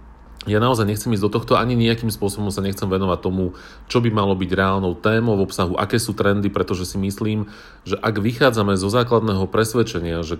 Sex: male